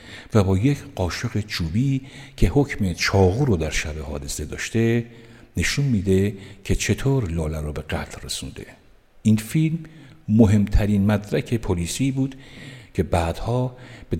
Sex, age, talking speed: male, 60-79, 130 wpm